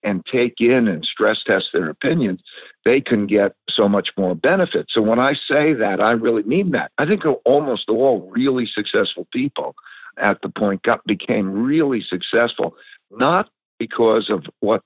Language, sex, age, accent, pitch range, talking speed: English, male, 60-79, American, 110-170 Hz, 170 wpm